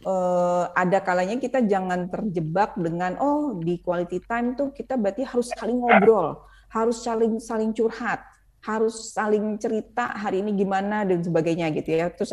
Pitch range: 165-225 Hz